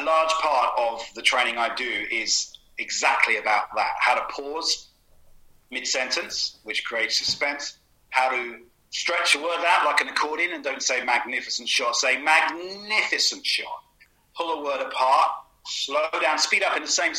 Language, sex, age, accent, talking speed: English, male, 40-59, British, 165 wpm